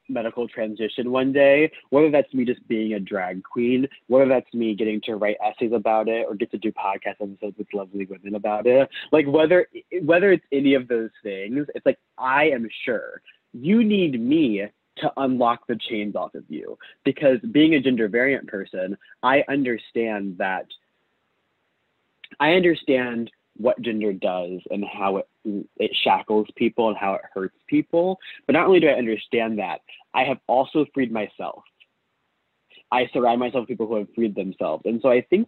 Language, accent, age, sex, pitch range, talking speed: English, American, 20-39, male, 110-155 Hz, 180 wpm